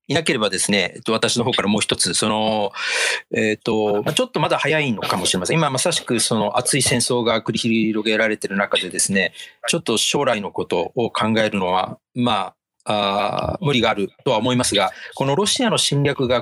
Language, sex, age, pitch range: Japanese, male, 40-59, 110-135 Hz